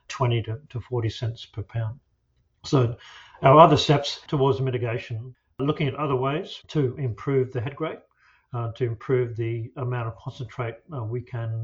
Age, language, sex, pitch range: 50-69, English, male, 115-130 Hz